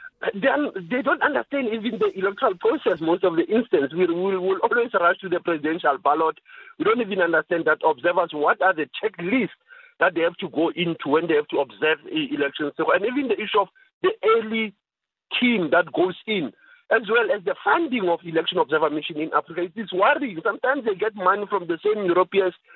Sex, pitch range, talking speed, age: male, 170-280 Hz, 205 wpm, 50-69